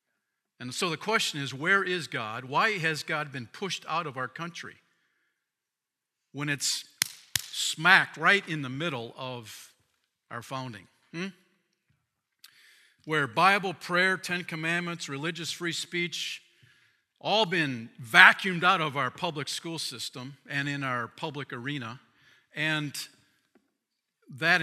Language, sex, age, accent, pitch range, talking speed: English, male, 50-69, American, 120-155 Hz, 125 wpm